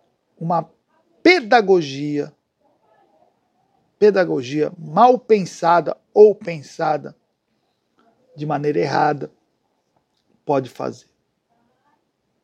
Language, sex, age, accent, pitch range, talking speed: Portuguese, male, 50-69, Brazilian, 180-275 Hz, 60 wpm